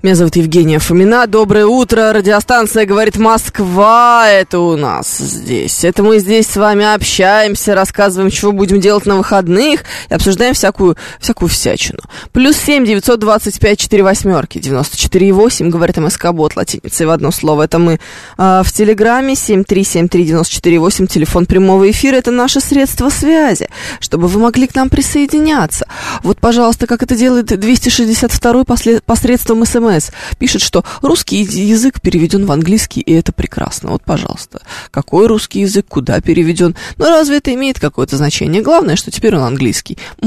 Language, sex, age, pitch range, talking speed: Russian, female, 20-39, 175-230 Hz, 160 wpm